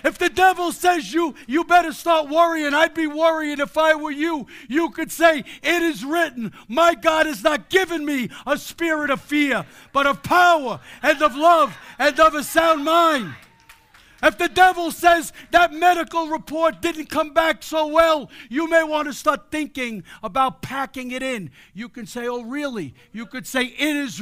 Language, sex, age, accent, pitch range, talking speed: English, male, 60-79, American, 285-340 Hz, 185 wpm